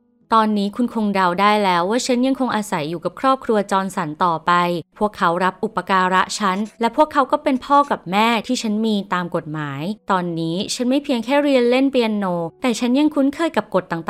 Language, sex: Thai, female